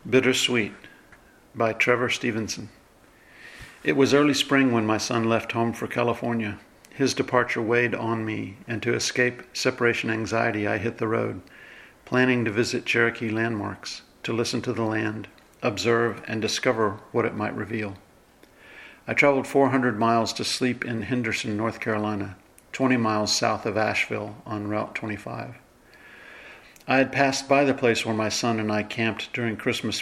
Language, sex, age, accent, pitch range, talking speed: English, male, 50-69, American, 110-125 Hz, 155 wpm